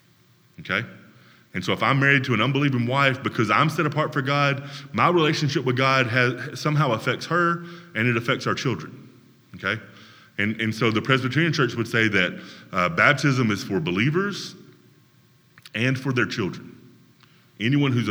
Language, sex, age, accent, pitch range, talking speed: English, male, 30-49, American, 105-140 Hz, 165 wpm